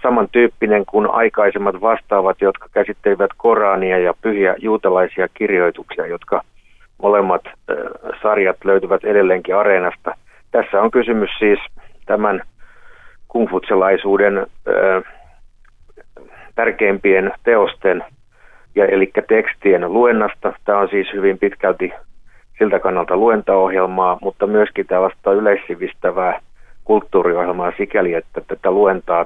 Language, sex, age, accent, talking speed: Finnish, male, 50-69, native, 100 wpm